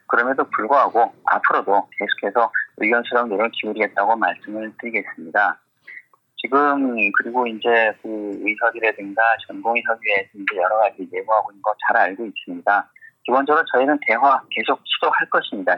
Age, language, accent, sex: 30-49, Korean, native, male